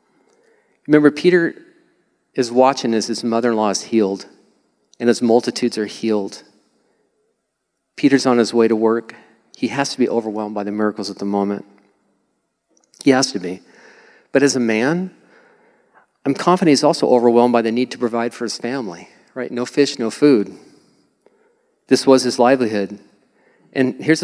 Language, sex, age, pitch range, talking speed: English, male, 40-59, 115-150 Hz, 155 wpm